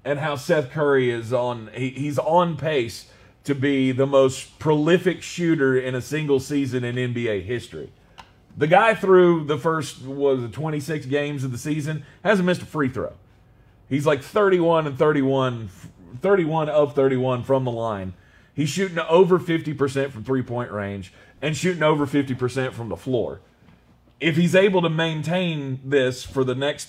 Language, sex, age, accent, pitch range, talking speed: English, male, 30-49, American, 110-150 Hz, 165 wpm